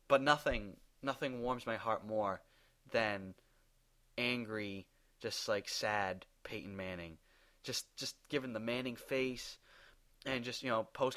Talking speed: 135 wpm